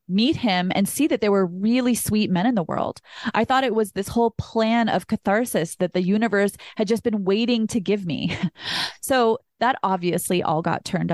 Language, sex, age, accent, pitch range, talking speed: English, female, 20-39, American, 190-255 Hz, 205 wpm